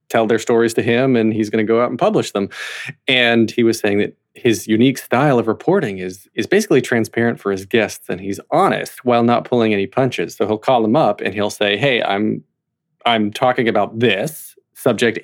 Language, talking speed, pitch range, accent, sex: English, 215 wpm, 110-145 Hz, American, male